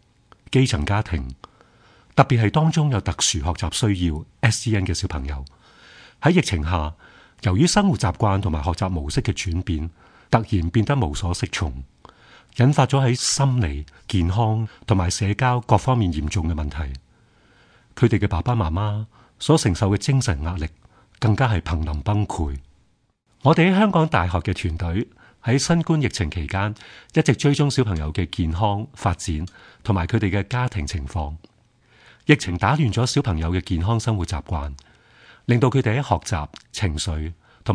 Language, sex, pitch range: Chinese, male, 85-120 Hz